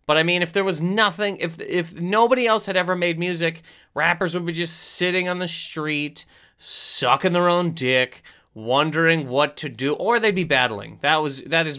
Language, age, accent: English, 30-49, American